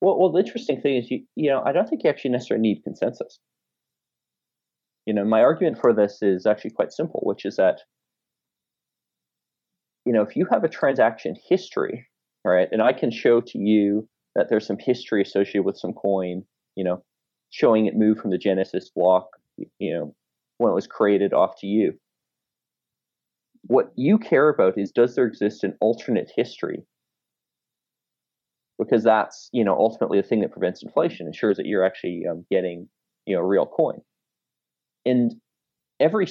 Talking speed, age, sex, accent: 170 wpm, 30-49, male, American